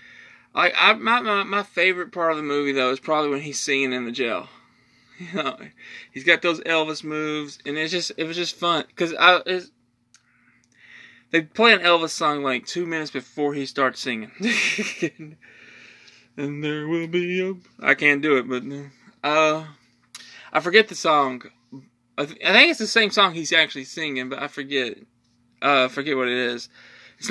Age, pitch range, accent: 20-39, 135-175 Hz, American